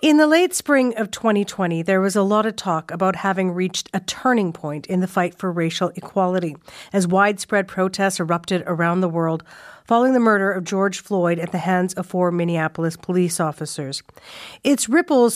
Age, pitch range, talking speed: 50-69, 180-235 Hz, 185 wpm